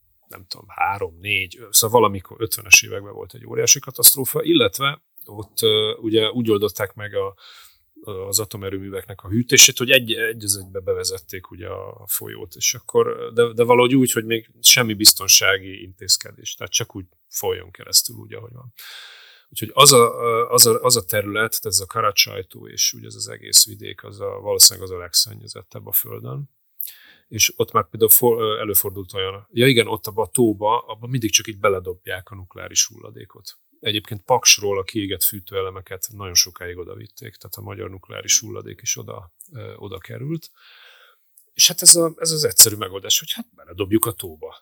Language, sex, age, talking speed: Hungarian, male, 30-49, 170 wpm